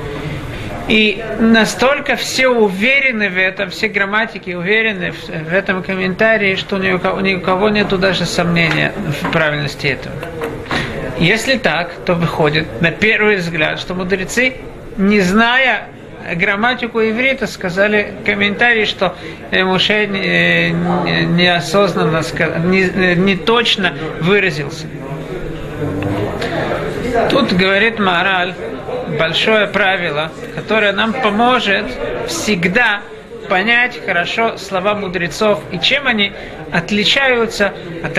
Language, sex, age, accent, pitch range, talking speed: Russian, male, 50-69, native, 170-220 Hz, 95 wpm